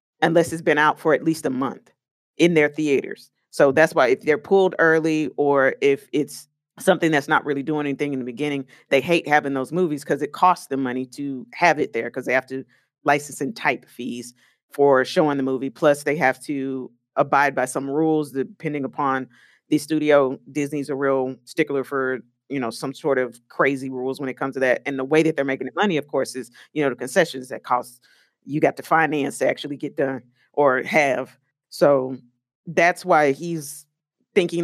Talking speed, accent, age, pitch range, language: 205 wpm, American, 40-59, 130-155 Hz, English